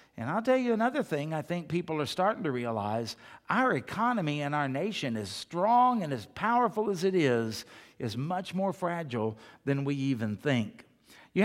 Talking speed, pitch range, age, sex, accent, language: 185 wpm, 145-210 Hz, 60-79, male, American, English